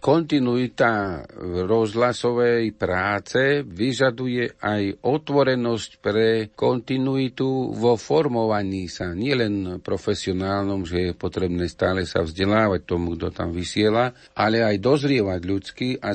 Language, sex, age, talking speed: Slovak, male, 50-69, 105 wpm